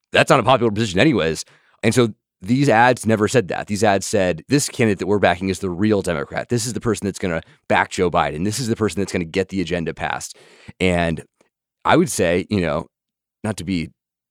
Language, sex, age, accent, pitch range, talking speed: English, male, 30-49, American, 90-115 Hz, 230 wpm